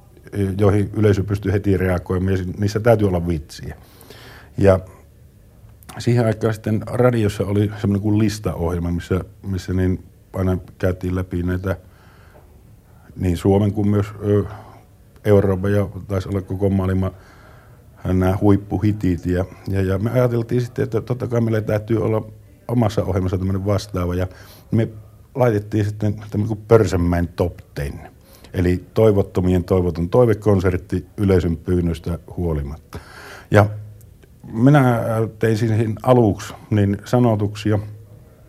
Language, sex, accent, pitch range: Finnish, male, native, 95-105 Hz